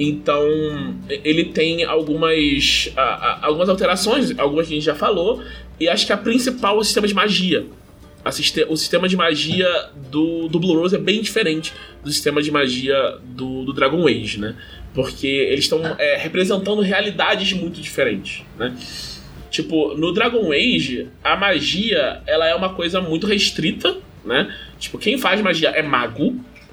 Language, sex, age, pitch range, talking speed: Portuguese, male, 20-39, 135-185 Hz, 165 wpm